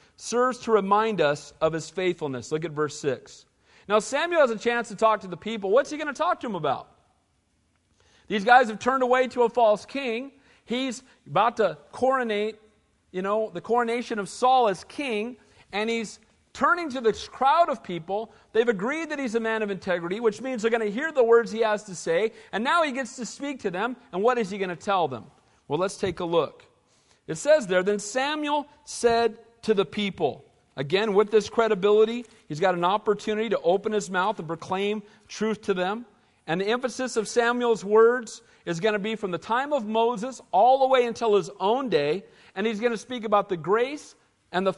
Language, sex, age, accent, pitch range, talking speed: English, male, 40-59, American, 195-250 Hz, 210 wpm